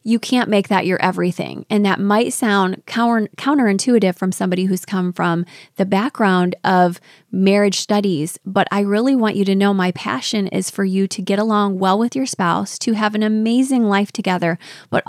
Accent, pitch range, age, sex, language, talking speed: American, 180-205 Hz, 20-39, female, English, 185 wpm